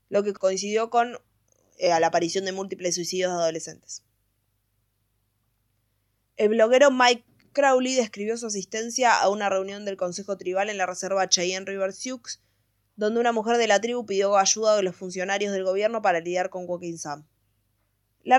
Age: 20-39